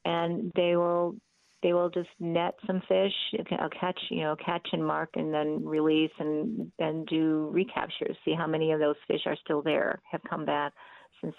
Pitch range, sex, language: 160-195 Hz, female, English